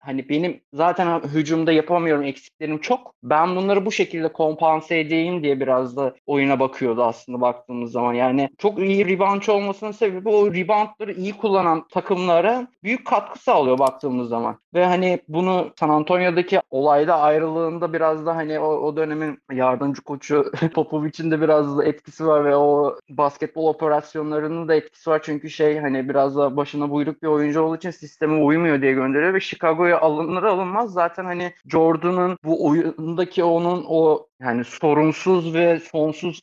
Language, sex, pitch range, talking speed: Turkish, male, 145-170 Hz, 155 wpm